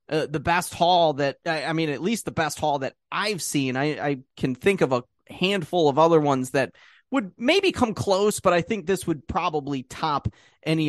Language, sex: English, male